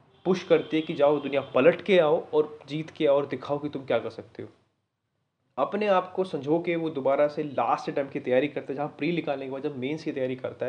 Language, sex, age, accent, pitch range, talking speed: Hindi, male, 30-49, native, 130-160 Hz, 245 wpm